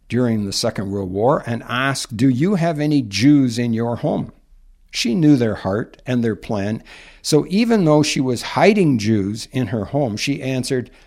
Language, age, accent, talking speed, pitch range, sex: English, 60-79, American, 185 wpm, 105-135 Hz, male